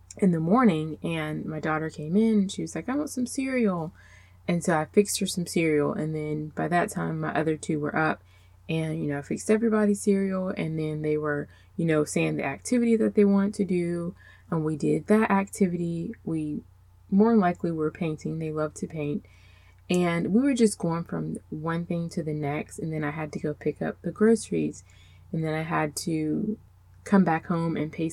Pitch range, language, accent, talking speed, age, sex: 145-195 Hz, English, American, 210 wpm, 20-39, female